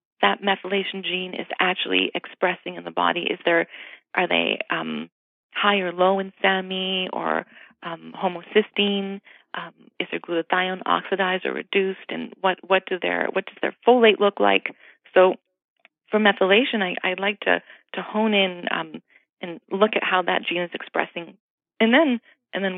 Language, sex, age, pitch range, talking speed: English, female, 30-49, 175-205 Hz, 165 wpm